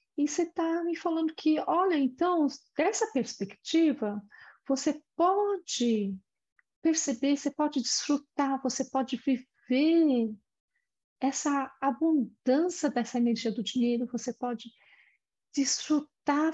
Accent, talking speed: Brazilian, 100 wpm